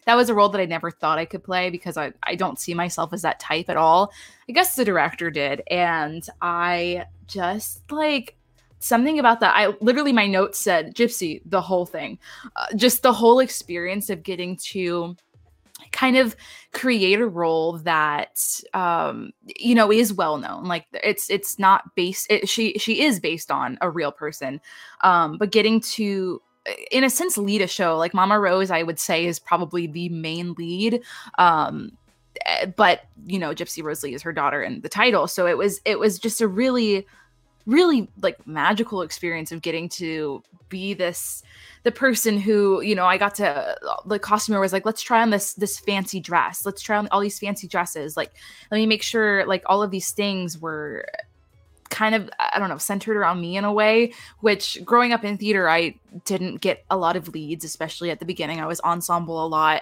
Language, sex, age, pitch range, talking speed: English, female, 20-39, 170-220 Hz, 195 wpm